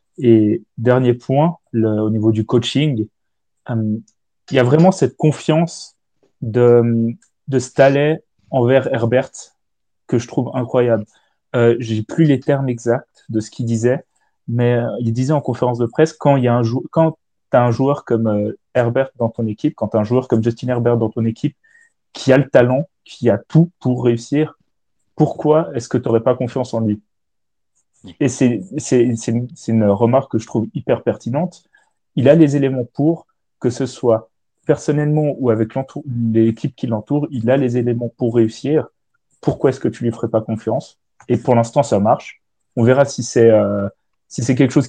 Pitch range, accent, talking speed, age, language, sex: 115-145 Hz, French, 185 wpm, 30-49, French, male